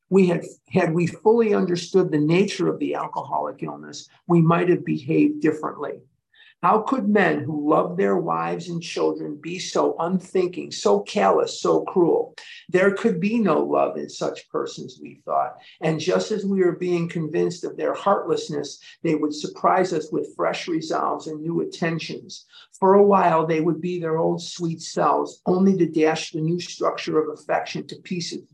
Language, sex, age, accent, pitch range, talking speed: English, male, 50-69, American, 155-190 Hz, 175 wpm